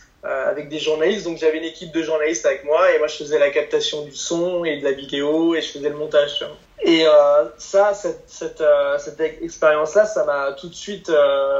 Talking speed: 215 wpm